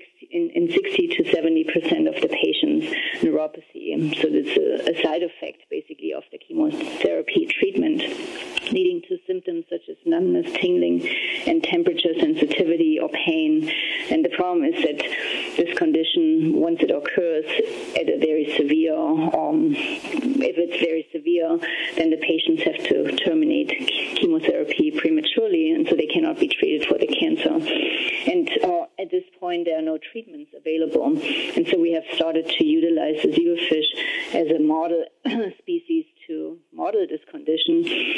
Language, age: English, 40-59